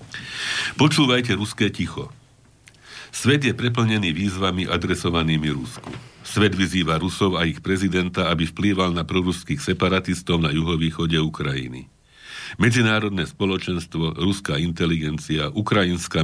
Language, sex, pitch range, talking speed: Slovak, male, 80-105 Hz, 105 wpm